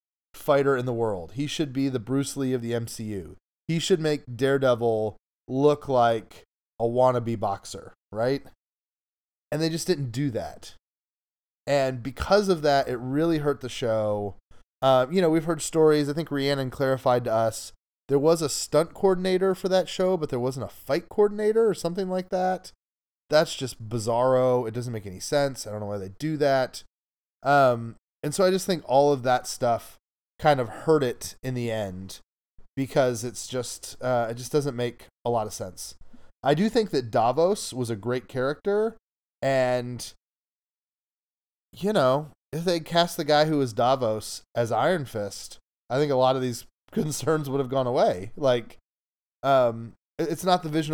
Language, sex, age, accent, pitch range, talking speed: English, male, 30-49, American, 115-150 Hz, 180 wpm